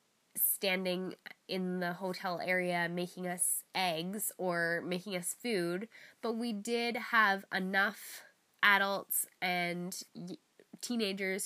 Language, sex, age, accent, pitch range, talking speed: English, female, 10-29, American, 175-205 Hz, 105 wpm